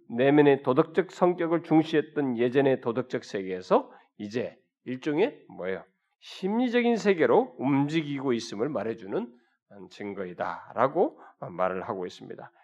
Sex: male